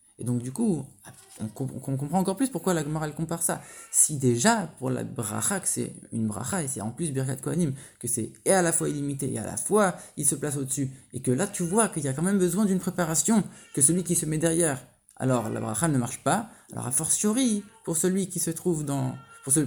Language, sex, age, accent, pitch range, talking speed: English, male, 20-39, French, 130-170 Hz, 245 wpm